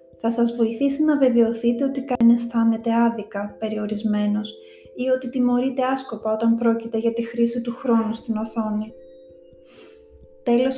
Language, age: Greek, 30-49